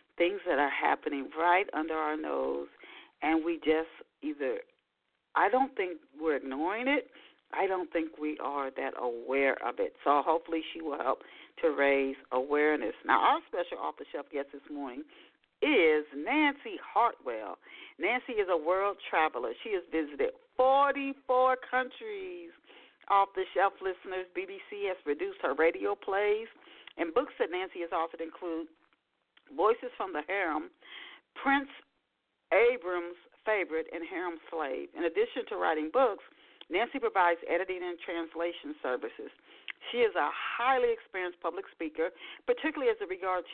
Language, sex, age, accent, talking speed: English, female, 40-59, American, 140 wpm